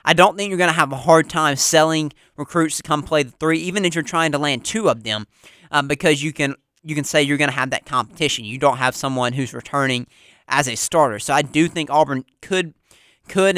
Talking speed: 245 wpm